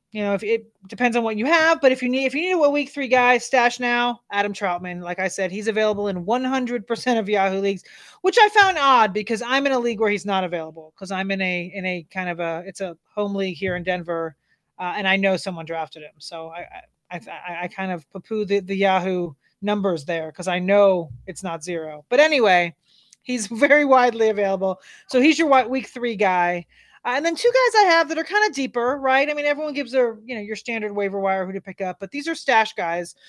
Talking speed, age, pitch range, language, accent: 245 wpm, 30-49, 185-260 Hz, English, American